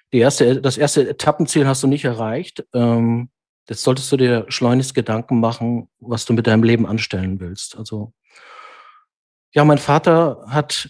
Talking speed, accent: 150 wpm, German